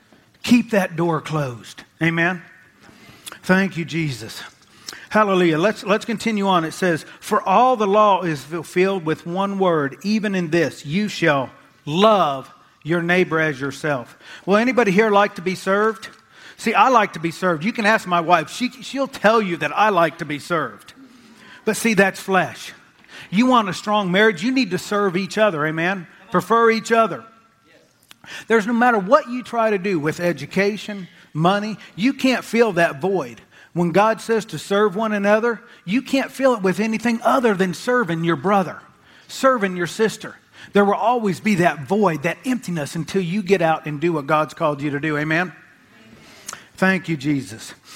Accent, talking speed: American, 175 wpm